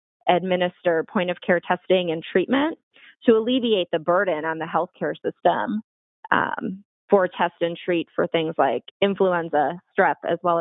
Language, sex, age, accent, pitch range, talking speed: English, female, 20-39, American, 160-185 Hz, 140 wpm